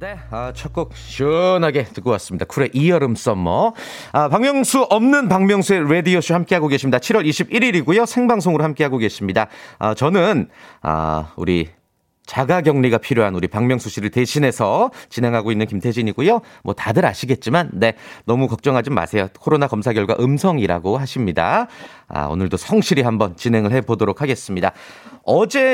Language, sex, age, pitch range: Korean, male, 30-49, 110-170 Hz